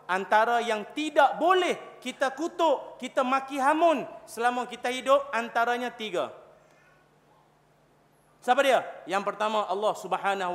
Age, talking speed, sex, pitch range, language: 30-49, 115 wpm, male, 185-255 Hz, Malay